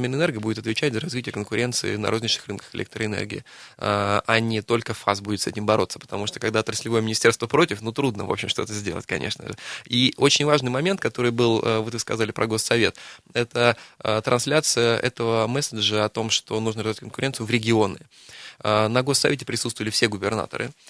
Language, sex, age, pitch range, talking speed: Russian, male, 20-39, 110-125 Hz, 170 wpm